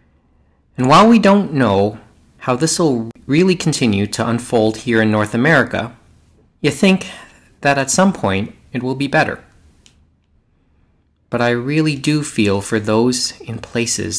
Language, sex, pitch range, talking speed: English, male, 95-135 Hz, 150 wpm